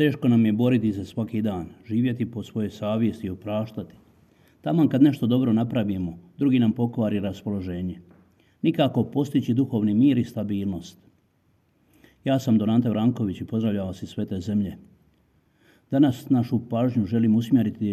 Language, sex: Croatian, male